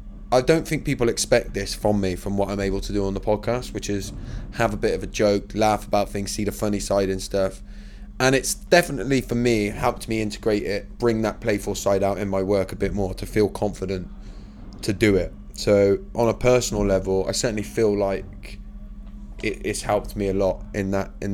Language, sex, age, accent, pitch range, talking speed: English, male, 20-39, British, 100-115 Hz, 215 wpm